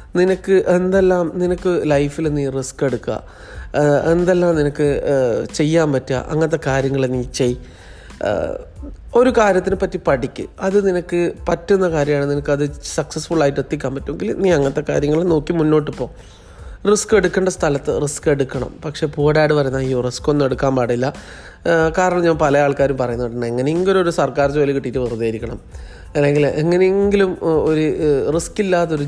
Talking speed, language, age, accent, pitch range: 130 wpm, Malayalam, 30-49, native, 135-180 Hz